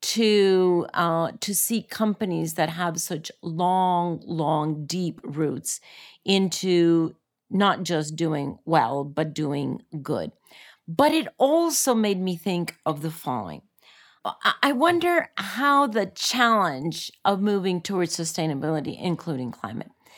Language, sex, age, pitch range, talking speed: English, female, 40-59, 165-230 Hz, 120 wpm